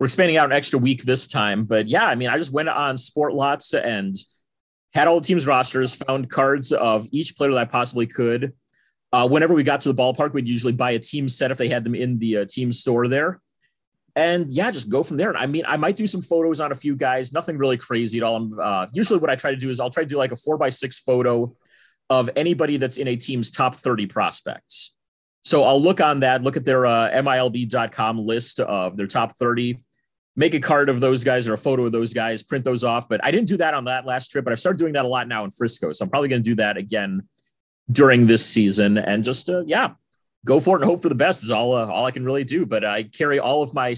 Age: 30-49